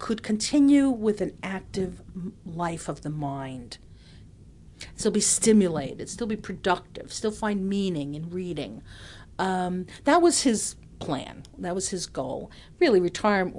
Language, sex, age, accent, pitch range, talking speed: English, female, 50-69, American, 180-235 Hz, 135 wpm